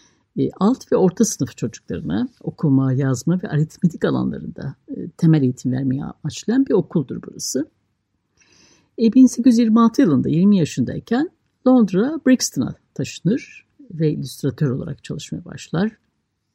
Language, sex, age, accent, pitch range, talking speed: Turkish, female, 60-79, native, 150-230 Hz, 105 wpm